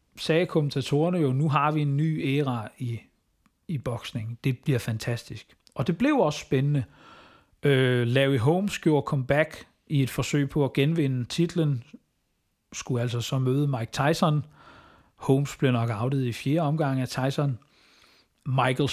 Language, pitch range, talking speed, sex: Danish, 130-155 Hz, 150 wpm, male